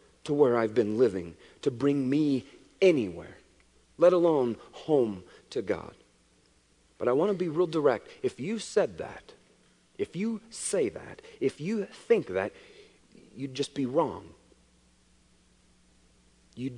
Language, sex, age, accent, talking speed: English, male, 40-59, American, 135 wpm